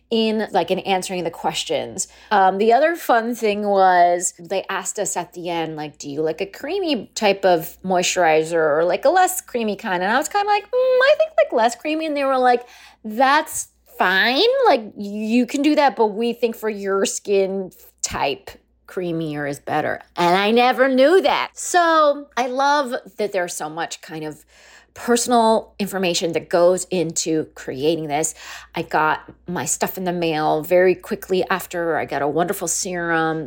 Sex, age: female, 30-49